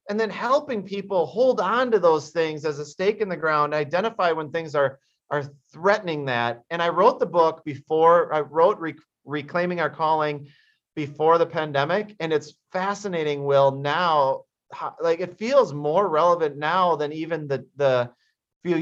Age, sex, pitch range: 30-49, male, 140-175 Hz